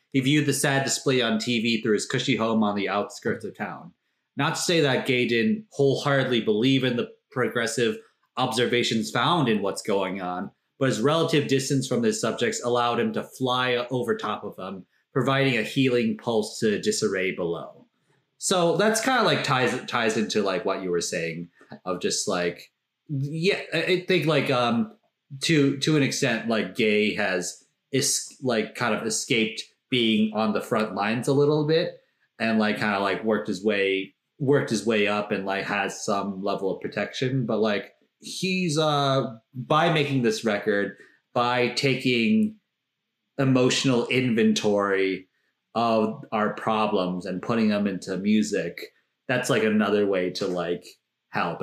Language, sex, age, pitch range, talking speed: English, male, 30-49, 105-145 Hz, 165 wpm